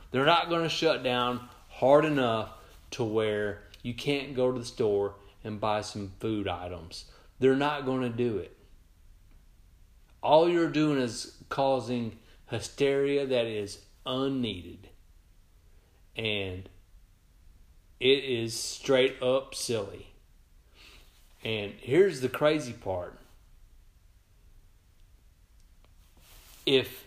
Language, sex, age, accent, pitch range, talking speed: English, male, 30-49, American, 90-135 Hz, 105 wpm